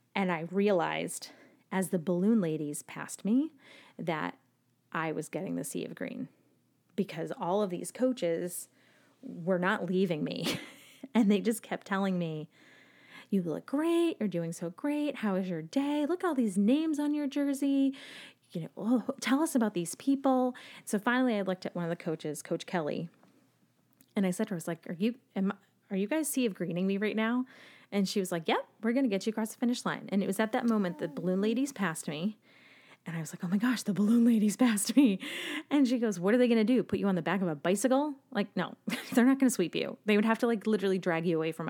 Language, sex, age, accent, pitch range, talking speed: English, female, 30-49, American, 175-250 Hz, 230 wpm